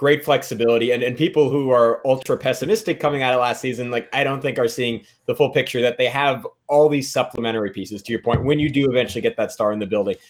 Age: 20-39